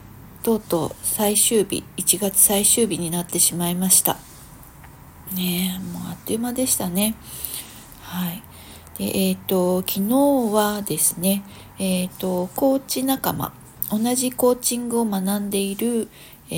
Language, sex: Japanese, female